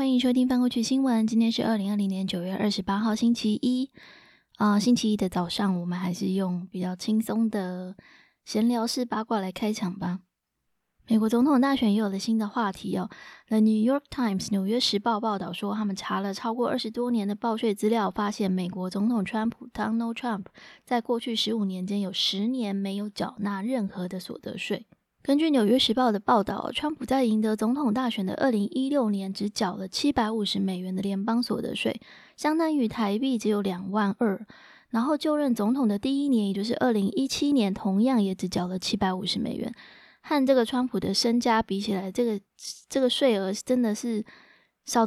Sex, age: female, 20-39